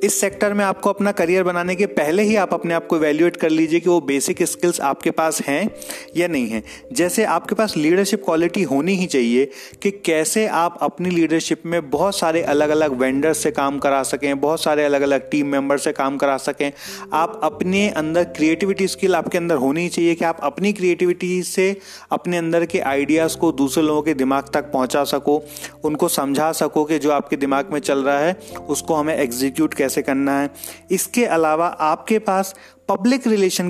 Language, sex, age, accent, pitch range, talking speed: Hindi, male, 30-49, native, 145-185 Hz, 195 wpm